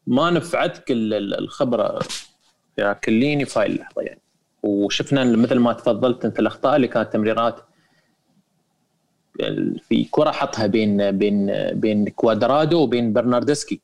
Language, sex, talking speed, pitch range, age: Arabic, male, 115 wpm, 125-185 Hz, 30-49